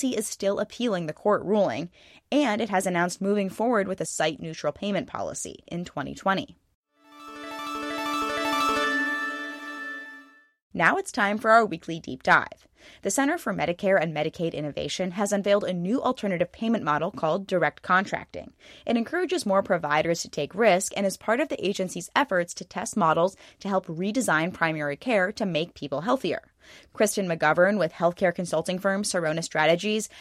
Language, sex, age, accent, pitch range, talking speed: English, female, 20-39, American, 155-205 Hz, 155 wpm